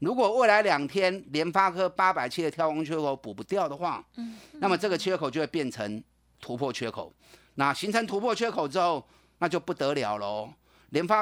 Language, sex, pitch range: Chinese, male, 130-195 Hz